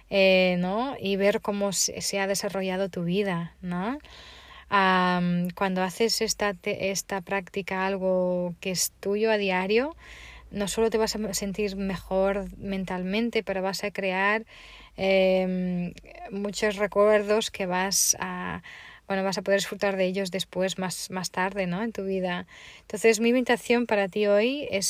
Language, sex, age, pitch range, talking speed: Spanish, female, 20-39, 185-210 Hz, 150 wpm